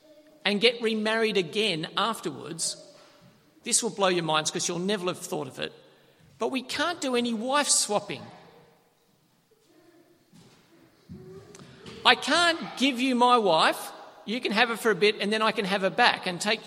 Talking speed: 165 wpm